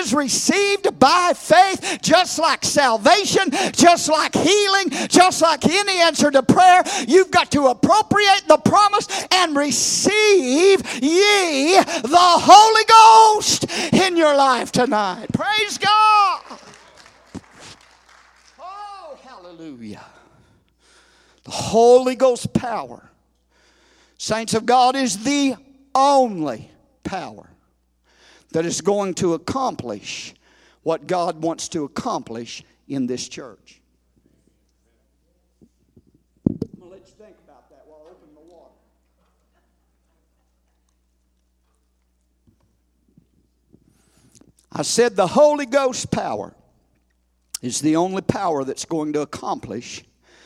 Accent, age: American, 50-69